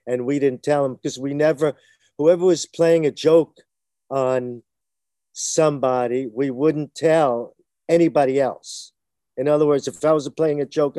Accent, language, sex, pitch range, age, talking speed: American, English, male, 130-160 Hz, 50-69, 160 wpm